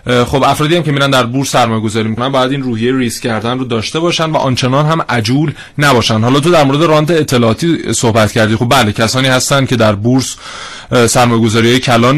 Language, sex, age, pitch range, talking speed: Persian, male, 30-49, 125-160 Hz, 190 wpm